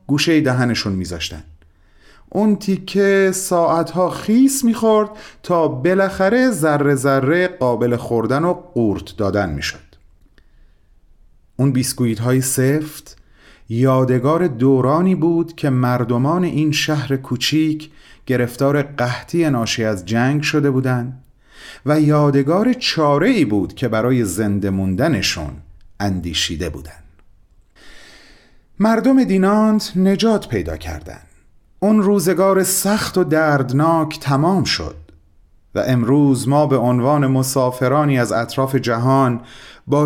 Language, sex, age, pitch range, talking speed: Persian, male, 30-49, 100-165 Hz, 105 wpm